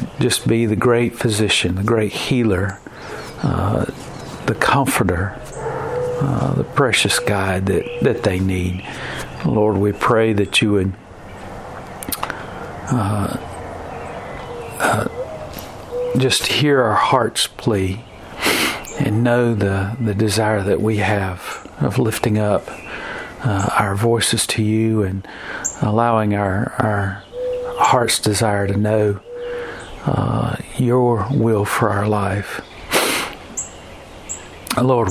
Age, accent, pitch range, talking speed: 50-69, American, 100-115 Hz, 110 wpm